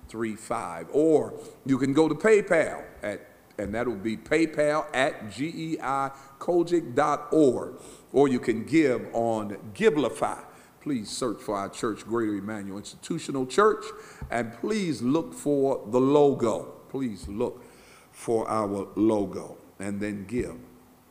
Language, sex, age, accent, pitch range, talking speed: English, male, 50-69, American, 105-145 Hz, 130 wpm